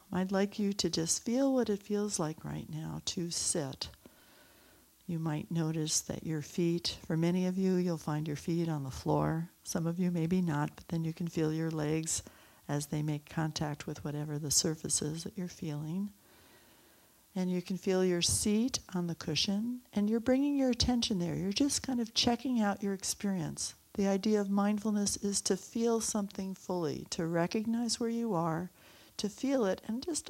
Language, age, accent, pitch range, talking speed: English, 60-79, American, 160-210 Hz, 190 wpm